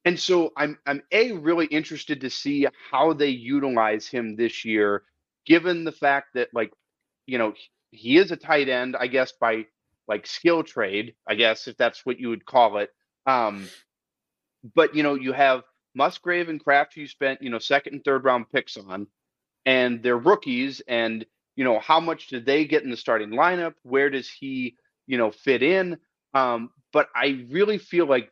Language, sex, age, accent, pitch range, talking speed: English, male, 30-49, American, 120-155 Hz, 190 wpm